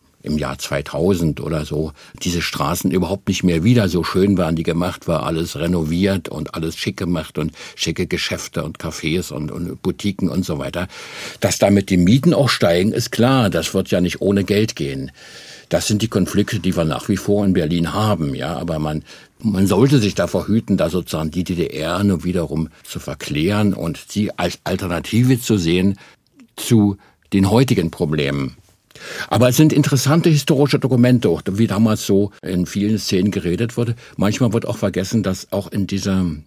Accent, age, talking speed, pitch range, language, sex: German, 60-79, 180 wpm, 85-105 Hz, German, male